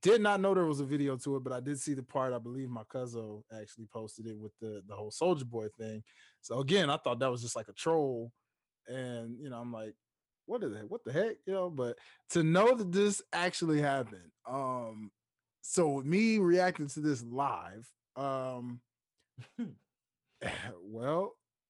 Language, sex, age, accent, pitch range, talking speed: English, male, 20-39, American, 125-210 Hz, 190 wpm